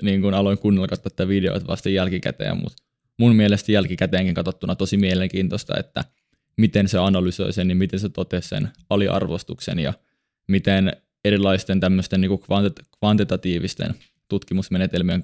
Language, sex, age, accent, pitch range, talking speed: Finnish, male, 20-39, native, 95-105 Hz, 130 wpm